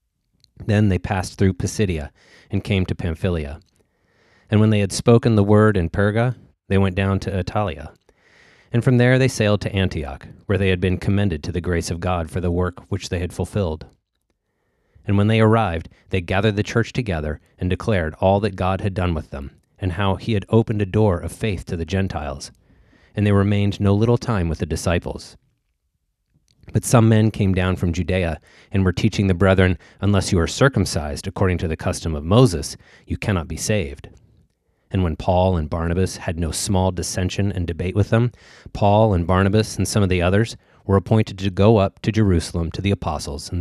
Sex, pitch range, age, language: male, 85-105 Hz, 30-49, English